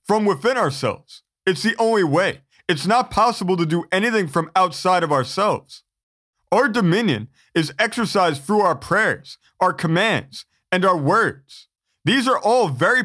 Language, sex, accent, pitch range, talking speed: English, male, American, 160-220 Hz, 150 wpm